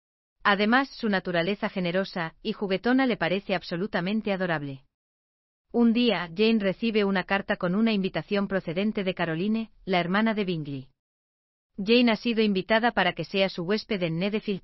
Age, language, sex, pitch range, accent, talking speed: 40-59, German, female, 165-210 Hz, Spanish, 150 wpm